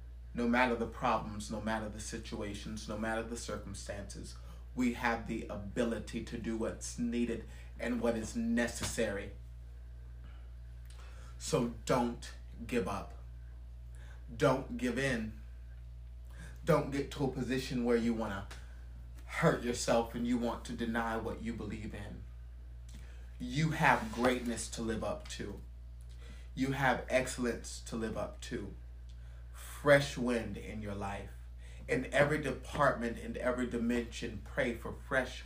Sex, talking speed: male, 135 wpm